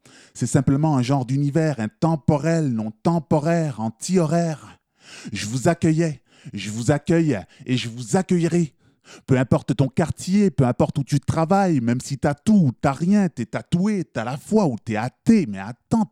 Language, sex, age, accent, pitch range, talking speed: French, male, 20-39, French, 130-175 Hz, 180 wpm